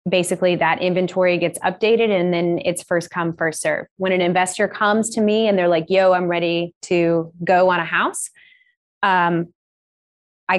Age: 20-39